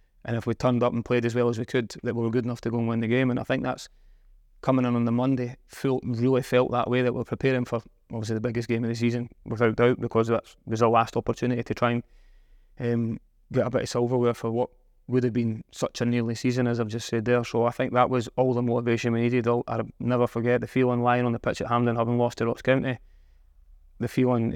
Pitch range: 115-125 Hz